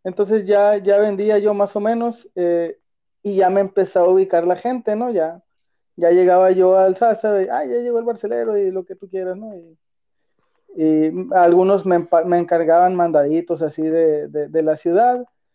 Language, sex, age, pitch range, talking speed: Spanish, male, 30-49, 175-220 Hz, 185 wpm